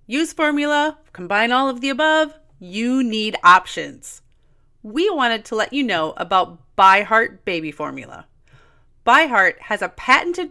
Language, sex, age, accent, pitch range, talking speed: English, female, 30-49, American, 190-275 Hz, 135 wpm